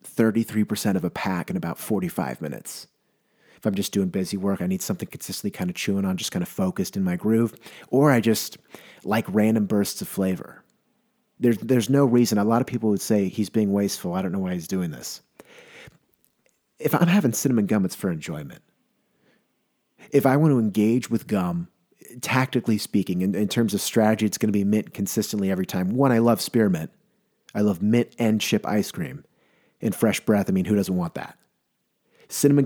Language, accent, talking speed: English, American, 195 wpm